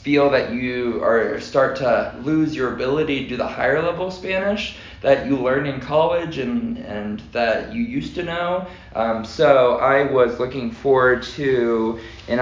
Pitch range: 115-140 Hz